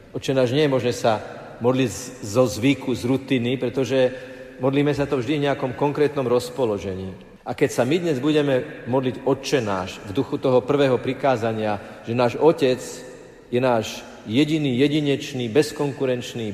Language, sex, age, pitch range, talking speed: Slovak, male, 50-69, 115-140 Hz, 150 wpm